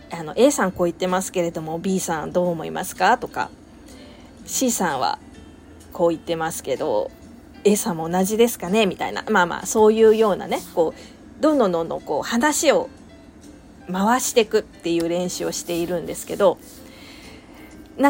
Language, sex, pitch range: Japanese, female, 185-305 Hz